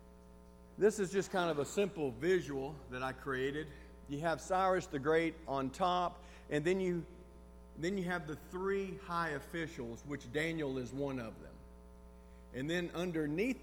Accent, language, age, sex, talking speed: American, English, 50-69, male, 160 wpm